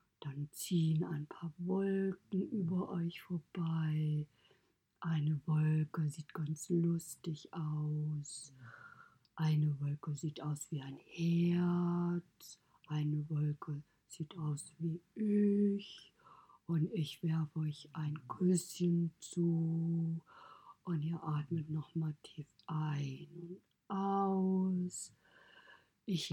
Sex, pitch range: female, 150-175 Hz